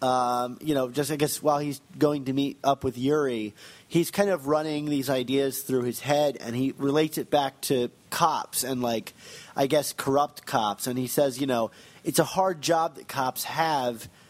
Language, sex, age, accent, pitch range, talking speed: English, male, 30-49, American, 130-160 Hz, 195 wpm